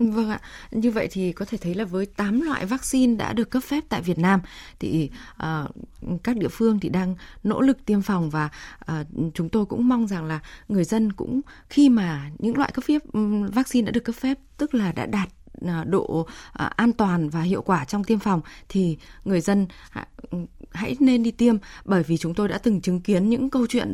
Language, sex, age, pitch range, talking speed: Vietnamese, female, 20-39, 175-240 Hz, 220 wpm